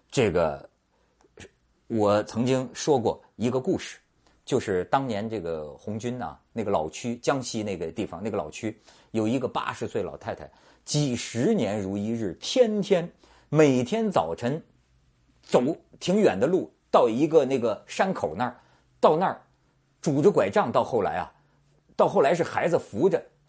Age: 50-69